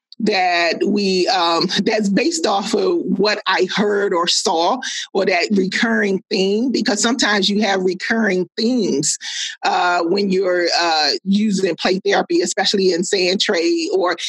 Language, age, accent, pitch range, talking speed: English, 40-59, American, 185-235 Hz, 145 wpm